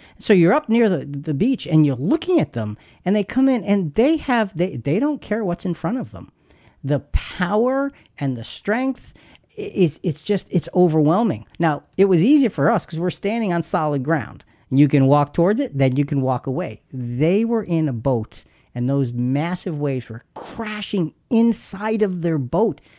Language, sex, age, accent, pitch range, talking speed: English, male, 40-59, American, 130-200 Hz, 195 wpm